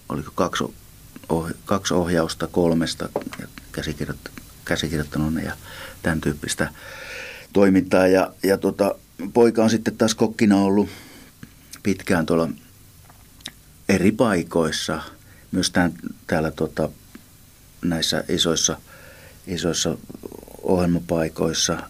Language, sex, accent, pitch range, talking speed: Finnish, male, native, 80-95 Hz, 80 wpm